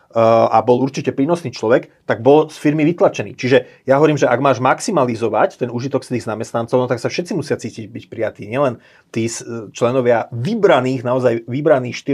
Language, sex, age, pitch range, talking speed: Slovak, male, 30-49, 115-130 Hz, 175 wpm